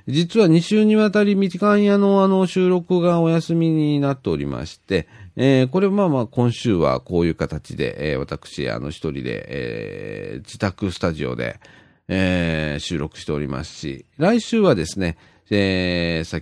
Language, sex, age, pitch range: Japanese, male, 40-59, 80-125 Hz